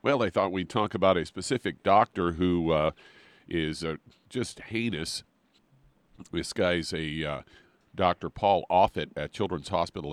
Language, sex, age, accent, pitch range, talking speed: English, male, 50-69, American, 85-105 Hz, 150 wpm